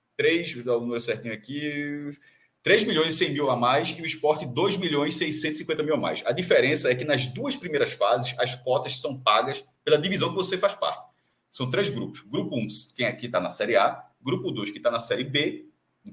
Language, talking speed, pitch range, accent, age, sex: Portuguese, 230 wpm, 130-185 Hz, Brazilian, 30-49, male